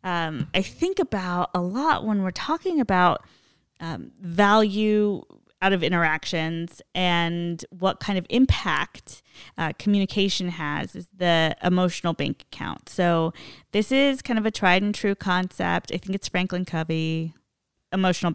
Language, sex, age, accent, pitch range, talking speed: English, female, 20-39, American, 165-200 Hz, 145 wpm